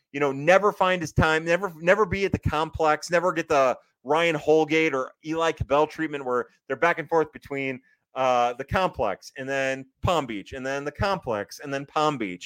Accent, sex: American, male